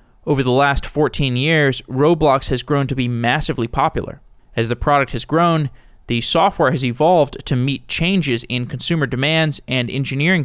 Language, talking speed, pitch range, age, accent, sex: English, 165 wpm, 125-160 Hz, 20-39, American, male